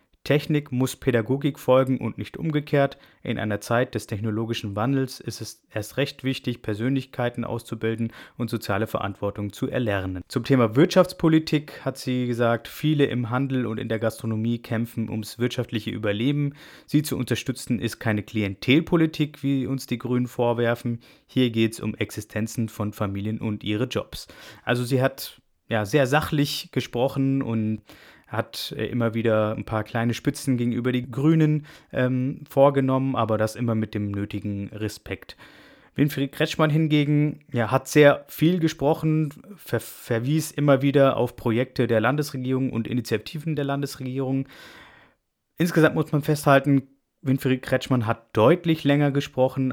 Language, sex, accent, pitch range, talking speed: German, male, German, 110-140 Hz, 145 wpm